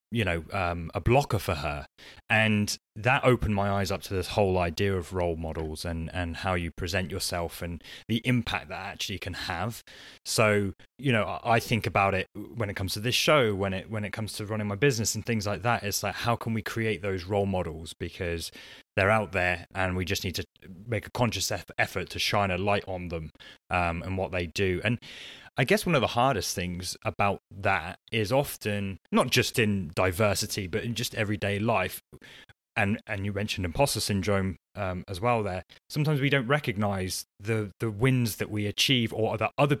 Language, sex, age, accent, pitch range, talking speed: English, male, 20-39, British, 95-115 Hz, 205 wpm